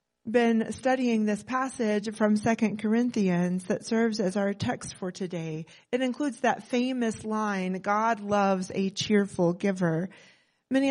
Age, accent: 30-49, American